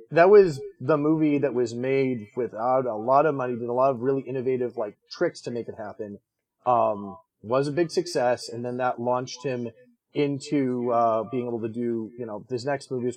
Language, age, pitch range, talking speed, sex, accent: English, 30-49, 125-175 Hz, 205 wpm, male, American